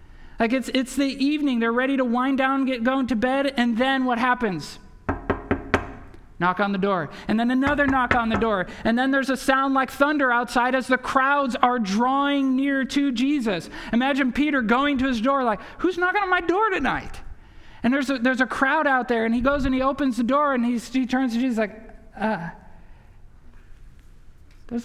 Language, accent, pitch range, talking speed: English, American, 220-270 Hz, 200 wpm